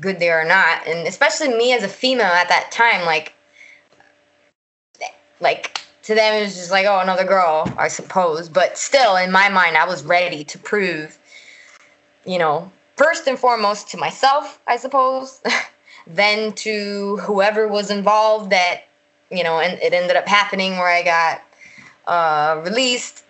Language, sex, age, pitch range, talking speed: English, female, 20-39, 165-210 Hz, 165 wpm